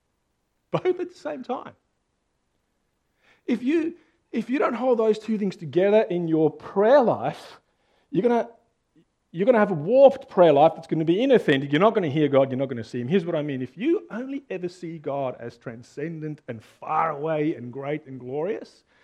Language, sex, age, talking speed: English, male, 40-59, 190 wpm